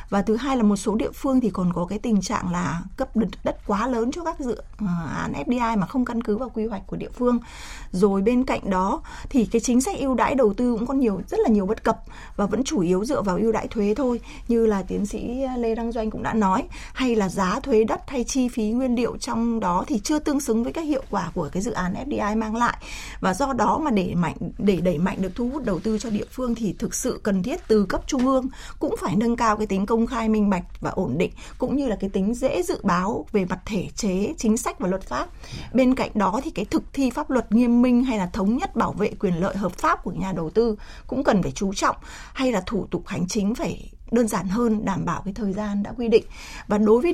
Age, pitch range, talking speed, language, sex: 20-39, 200-250 Hz, 265 wpm, Vietnamese, female